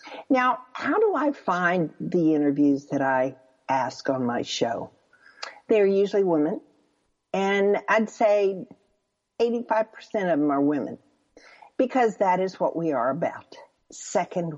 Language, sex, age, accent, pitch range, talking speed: English, female, 50-69, American, 155-225 Hz, 130 wpm